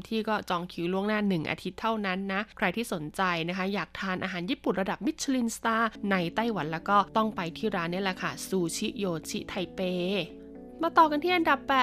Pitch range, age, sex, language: 185-240 Hz, 20-39, female, Thai